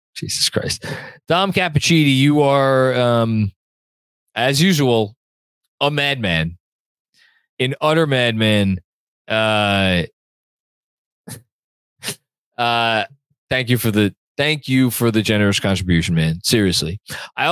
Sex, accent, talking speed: male, American, 90 wpm